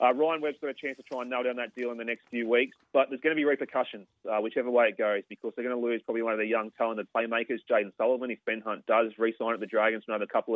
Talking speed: 305 wpm